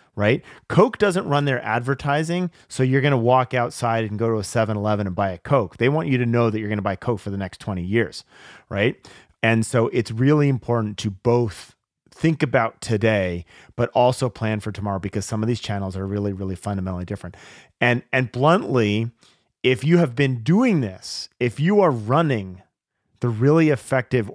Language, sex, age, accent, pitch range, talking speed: English, male, 30-49, American, 105-140 Hz, 195 wpm